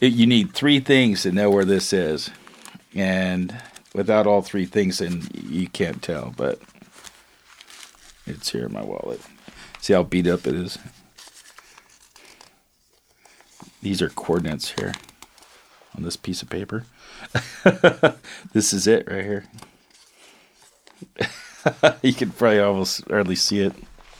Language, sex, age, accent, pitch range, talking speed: English, male, 40-59, American, 100-130 Hz, 125 wpm